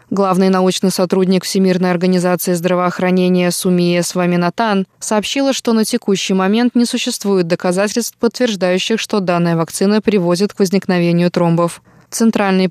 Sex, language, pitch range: female, Russian, 180-205 Hz